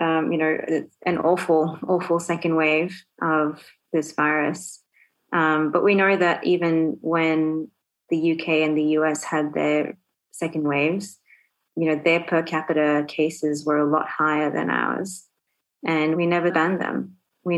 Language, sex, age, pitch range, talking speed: English, female, 20-39, 145-165 Hz, 155 wpm